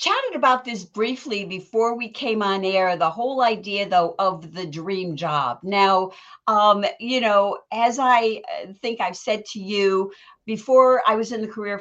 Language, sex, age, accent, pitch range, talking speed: English, female, 50-69, American, 175-225 Hz, 175 wpm